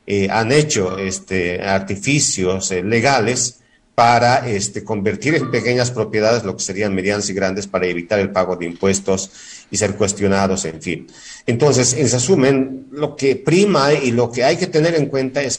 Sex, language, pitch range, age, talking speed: male, Spanish, 100-130 Hz, 50-69, 175 wpm